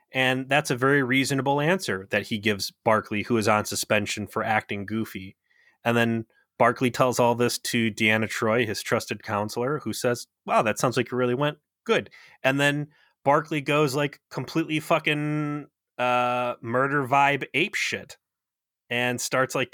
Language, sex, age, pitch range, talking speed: English, male, 30-49, 115-150 Hz, 165 wpm